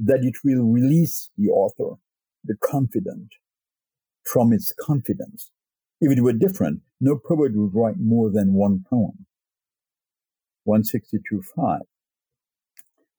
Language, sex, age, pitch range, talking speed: English, male, 60-79, 110-165 Hz, 110 wpm